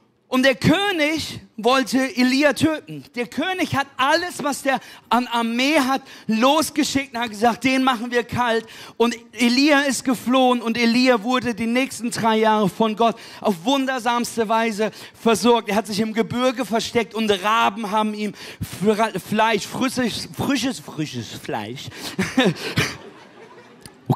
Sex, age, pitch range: male, 40-59, 195-260 Hz